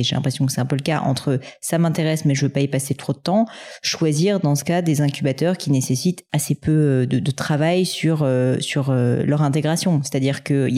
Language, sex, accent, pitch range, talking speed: French, female, French, 135-160 Hz, 240 wpm